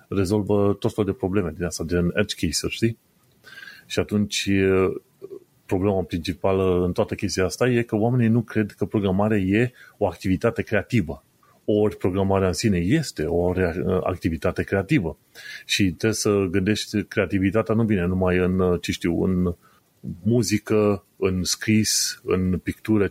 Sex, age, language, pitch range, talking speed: male, 30-49, Romanian, 95-110 Hz, 145 wpm